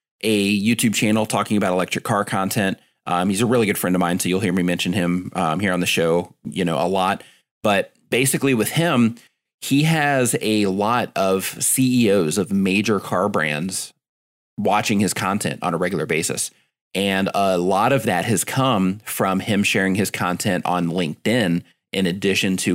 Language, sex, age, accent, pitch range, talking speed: English, male, 30-49, American, 90-110 Hz, 180 wpm